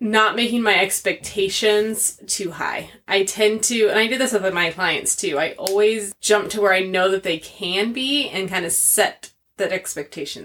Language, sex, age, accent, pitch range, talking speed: English, female, 20-39, American, 175-210 Hz, 195 wpm